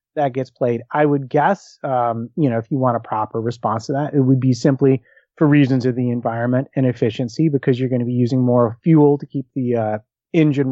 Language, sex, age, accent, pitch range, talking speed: English, male, 30-49, American, 125-155 Hz, 230 wpm